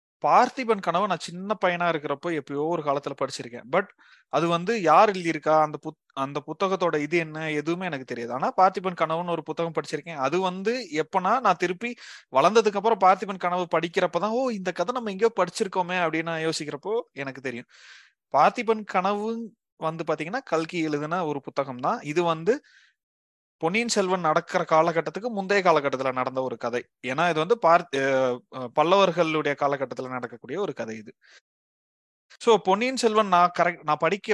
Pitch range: 150-190 Hz